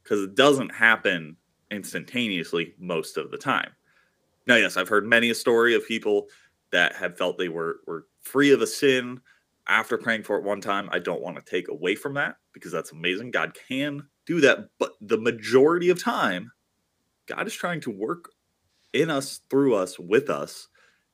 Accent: American